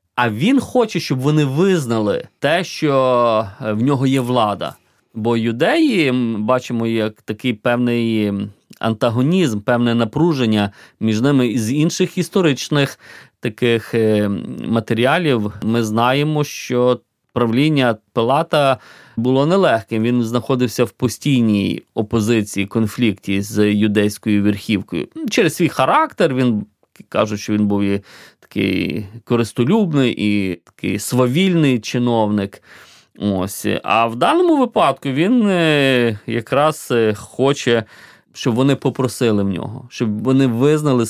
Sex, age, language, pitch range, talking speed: male, 30-49, Ukrainian, 110-135 Hz, 110 wpm